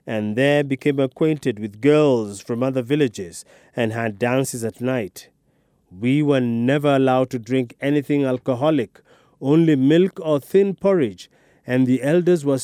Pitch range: 125-165 Hz